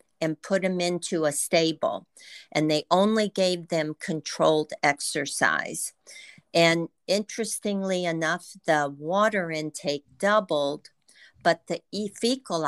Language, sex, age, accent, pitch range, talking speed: English, female, 50-69, American, 155-185 Hz, 110 wpm